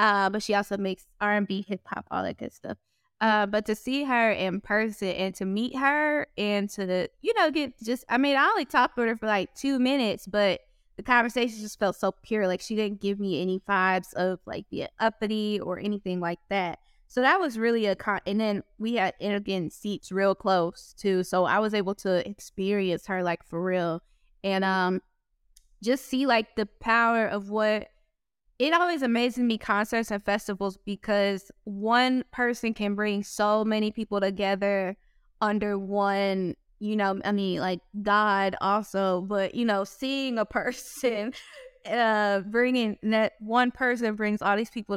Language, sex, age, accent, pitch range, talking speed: English, female, 20-39, American, 195-240 Hz, 185 wpm